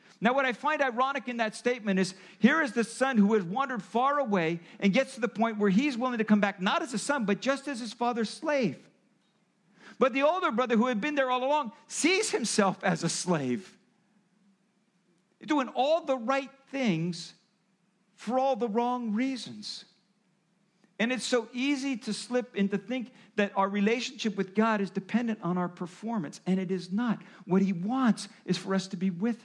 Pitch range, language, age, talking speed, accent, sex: 185-240 Hz, English, 50-69, 195 wpm, American, male